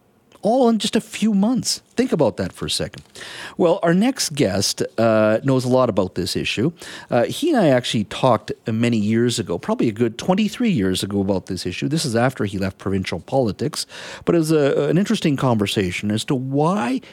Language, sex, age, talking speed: English, male, 50-69, 200 wpm